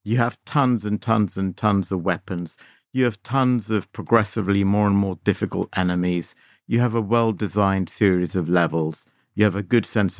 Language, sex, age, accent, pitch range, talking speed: English, male, 50-69, British, 95-115 Hz, 180 wpm